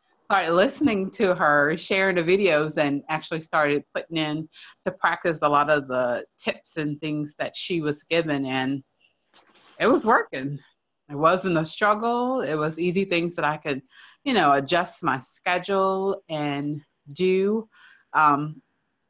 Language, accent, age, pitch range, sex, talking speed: English, American, 30-49, 145-170 Hz, female, 150 wpm